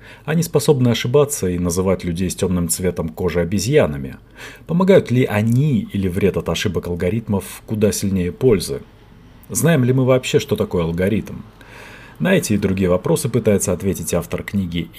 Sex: male